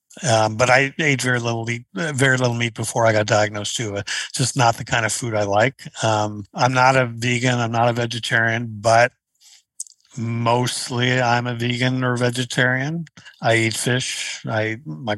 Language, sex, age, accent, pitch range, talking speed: English, male, 60-79, American, 110-130 Hz, 180 wpm